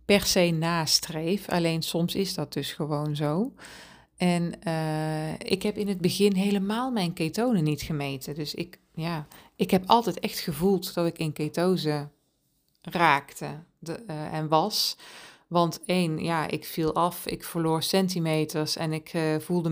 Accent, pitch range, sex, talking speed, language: Dutch, 155-180 Hz, female, 160 wpm, Dutch